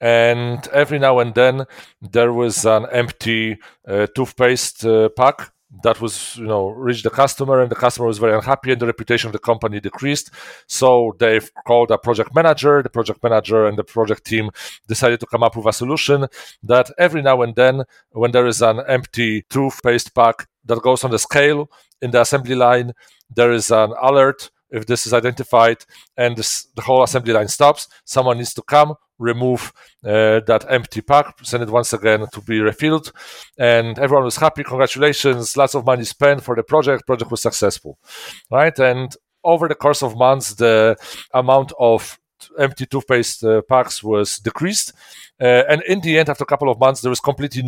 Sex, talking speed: male, 190 wpm